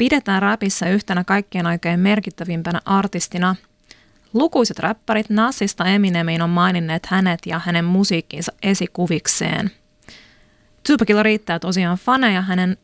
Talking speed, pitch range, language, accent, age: 110 wpm, 170-205 Hz, Finnish, native, 30-49